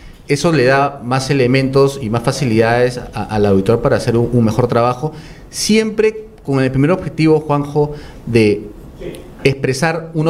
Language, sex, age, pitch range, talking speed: Spanish, male, 30-49, 115-145 Hz, 145 wpm